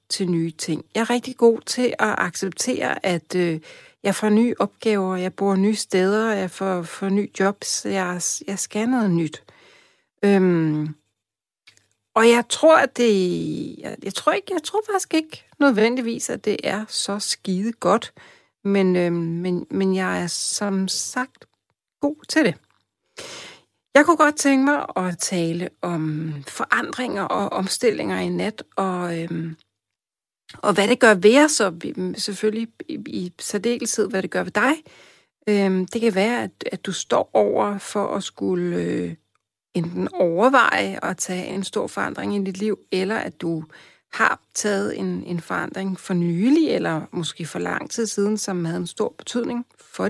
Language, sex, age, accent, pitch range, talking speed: Danish, female, 60-79, native, 170-235 Hz, 155 wpm